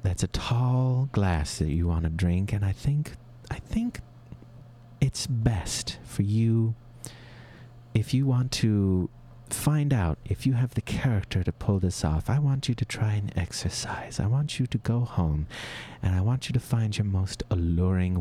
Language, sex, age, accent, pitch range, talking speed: English, male, 30-49, American, 95-135 Hz, 180 wpm